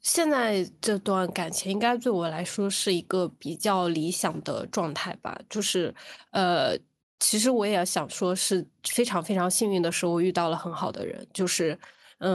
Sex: female